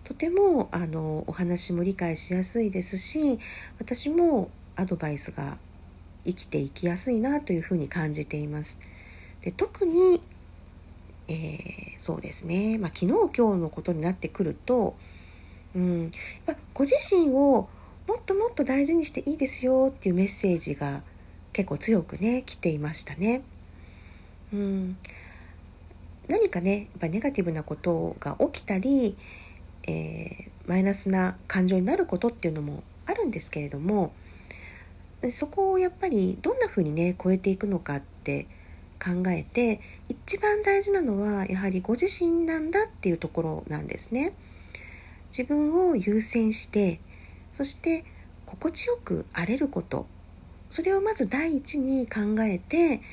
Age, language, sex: 40-59, Japanese, female